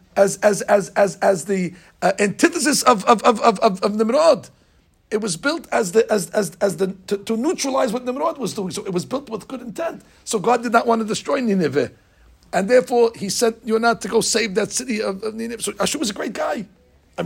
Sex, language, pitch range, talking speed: male, English, 175-235 Hz, 235 wpm